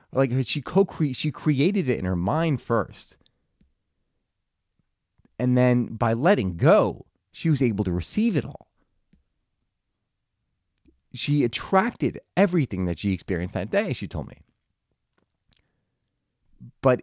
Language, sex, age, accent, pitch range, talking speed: English, male, 30-49, American, 100-165 Hz, 120 wpm